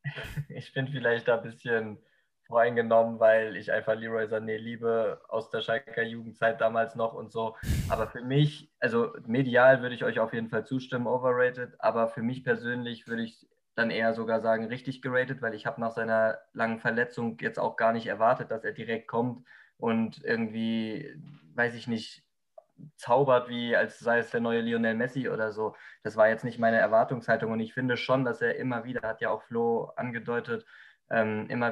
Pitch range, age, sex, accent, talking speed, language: 115-125 Hz, 20-39, male, German, 185 wpm, German